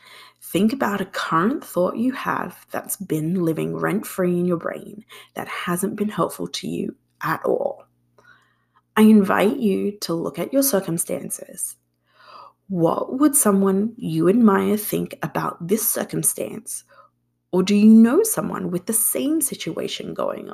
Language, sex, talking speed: English, female, 145 wpm